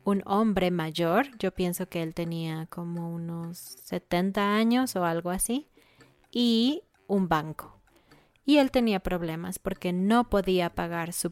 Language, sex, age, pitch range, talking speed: Spanish, female, 20-39, 175-205 Hz, 145 wpm